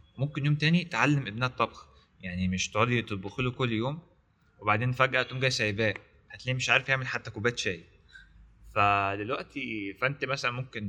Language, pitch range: Arabic, 100-120 Hz